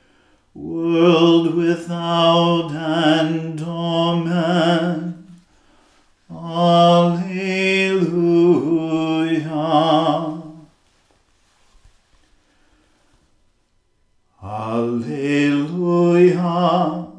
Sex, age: male, 40-59